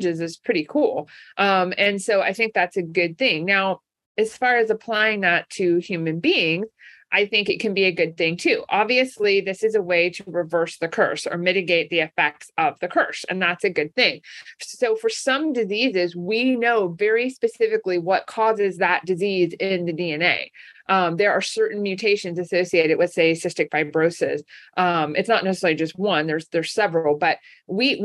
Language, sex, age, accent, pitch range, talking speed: English, female, 30-49, American, 175-235 Hz, 185 wpm